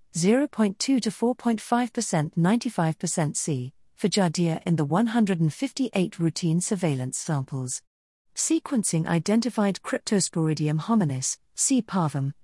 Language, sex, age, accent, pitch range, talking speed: English, female, 50-69, British, 160-215 Hz, 85 wpm